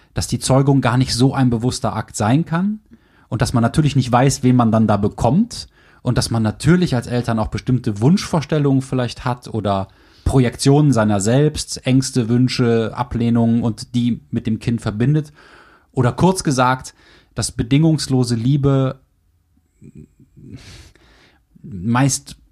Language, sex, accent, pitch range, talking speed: German, male, German, 105-135 Hz, 140 wpm